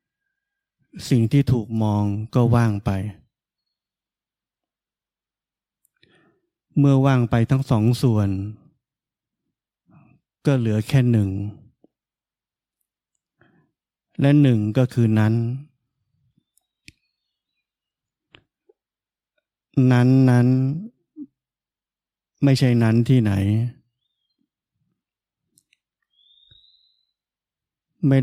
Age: 20-39